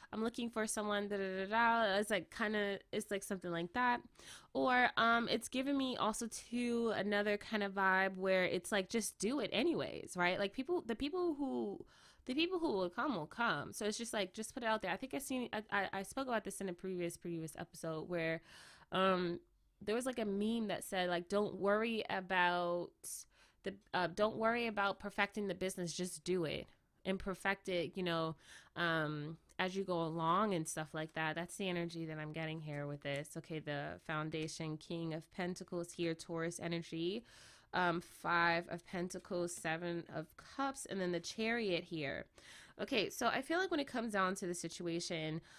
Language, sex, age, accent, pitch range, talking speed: English, female, 20-39, American, 170-220 Hz, 200 wpm